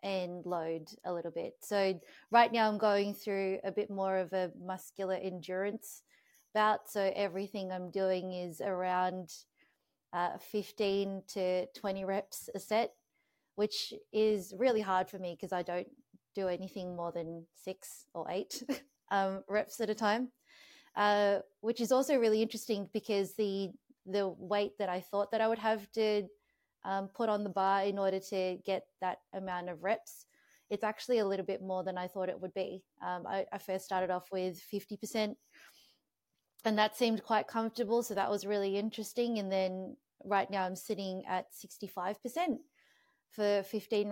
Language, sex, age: English, female, 30-49